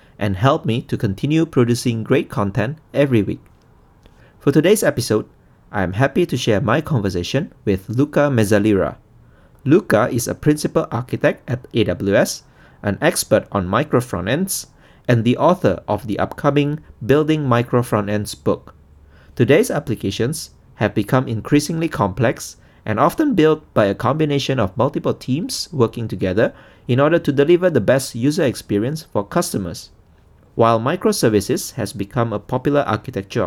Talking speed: 140 wpm